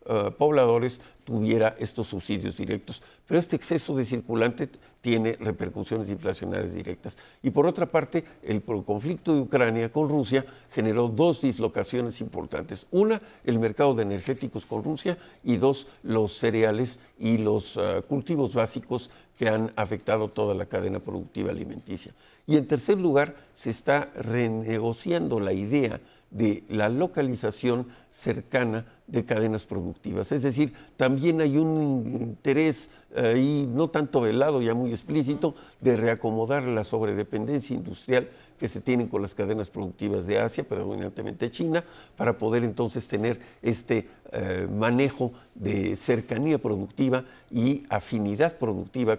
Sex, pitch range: male, 110-140 Hz